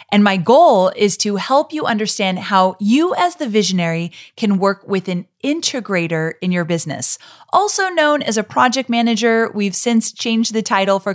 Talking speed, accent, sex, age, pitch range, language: 180 wpm, American, female, 30-49, 175-235 Hz, English